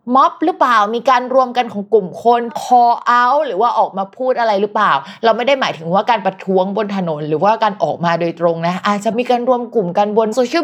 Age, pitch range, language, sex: 20-39, 180-245 Hz, Thai, female